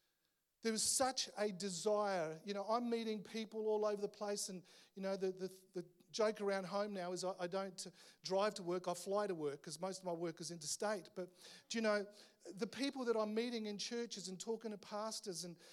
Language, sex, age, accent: English, male, 40-59, Australian